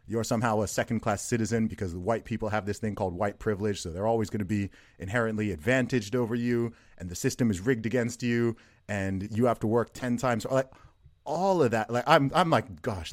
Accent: American